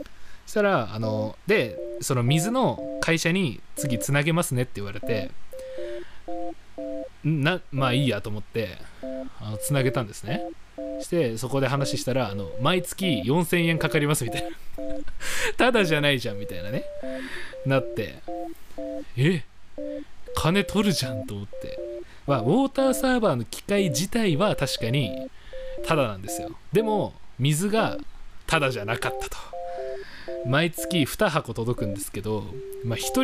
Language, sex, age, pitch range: Japanese, male, 20-39, 115-175 Hz